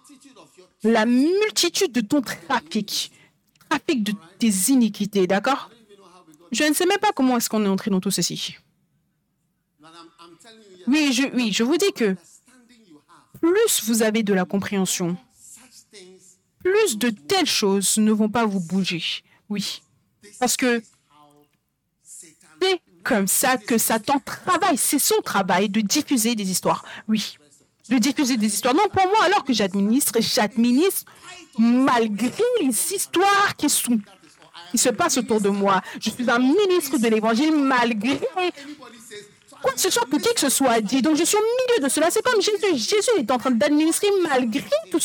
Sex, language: female, French